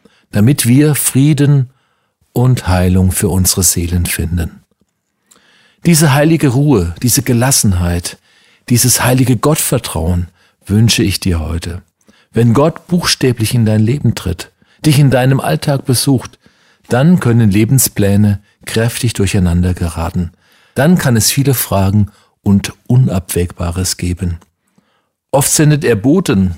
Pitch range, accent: 95-130 Hz, German